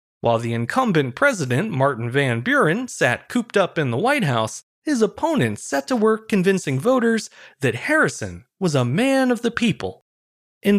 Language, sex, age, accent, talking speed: English, male, 30-49, American, 165 wpm